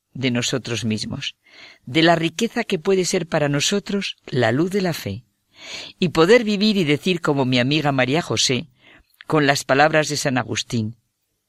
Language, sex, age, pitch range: Spanish, female, 50-69, 115-165 Hz